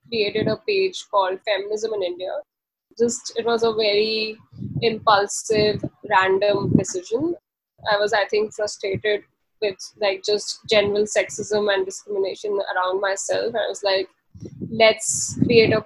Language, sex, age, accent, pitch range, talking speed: English, female, 10-29, Indian, 210-255 Hz, 130 wpm